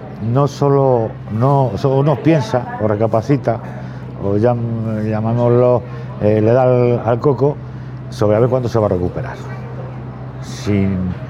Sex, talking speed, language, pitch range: male, 140 wpm, Spanish, 110-140 Hz